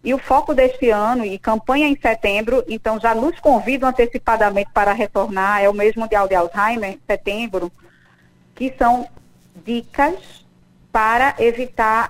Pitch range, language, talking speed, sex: 200-245 Hz, Portuguese, 140 wpm, female